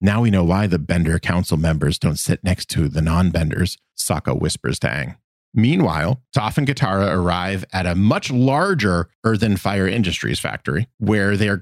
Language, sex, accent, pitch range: English, male, American, 90-120 Hz